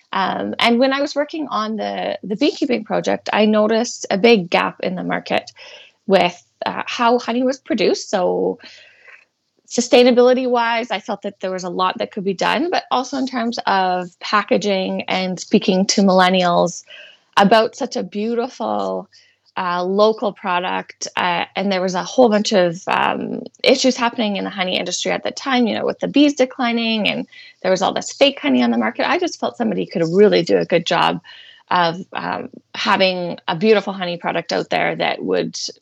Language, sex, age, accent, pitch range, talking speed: English, female, 20-39, American, 180-240 Hz, 185 wpm